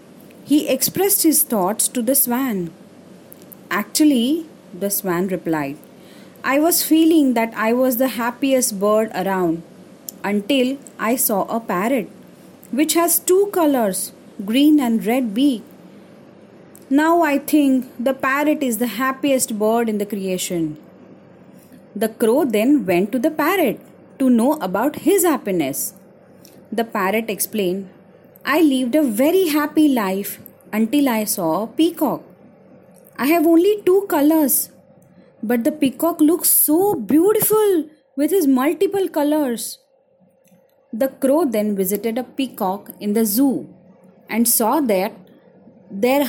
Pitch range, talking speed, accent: 200-295 Hz, 130 wpm, Indian